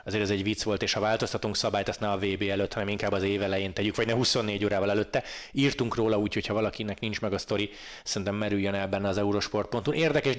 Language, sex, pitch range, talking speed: Hungarian, male, 100-115 Hz, 235 wpm